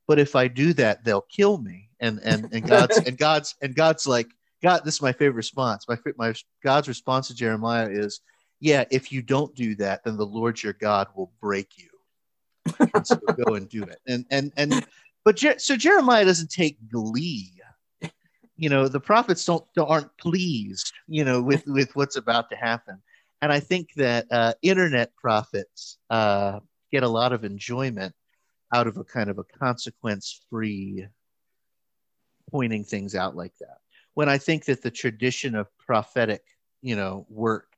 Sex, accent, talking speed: male, American, 180 wpm